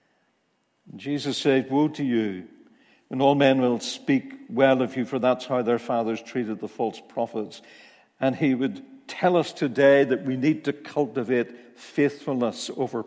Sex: male